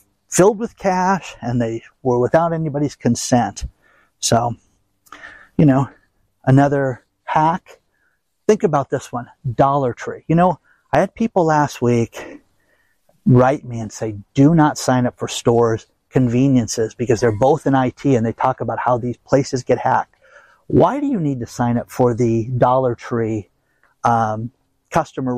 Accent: American